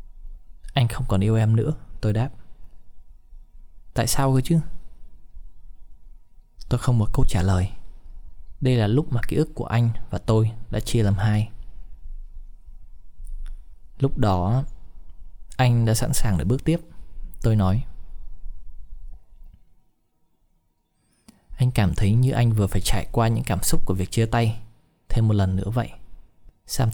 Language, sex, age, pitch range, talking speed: Vietnamese, male, 20-39, 85-120 Hz, 145 wpm